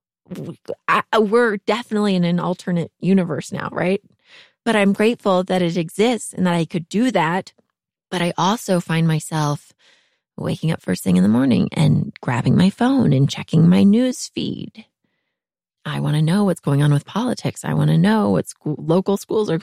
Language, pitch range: English, 160-210 Hz